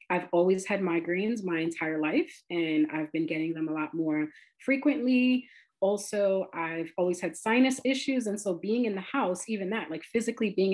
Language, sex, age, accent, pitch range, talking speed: English, female, 30-49, American, 170-215 Hz, 185 wpm